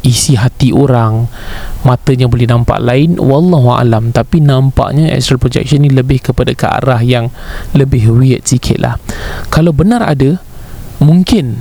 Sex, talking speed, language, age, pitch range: male, 145 wpm, Malay, 20-39, 120-145 Hz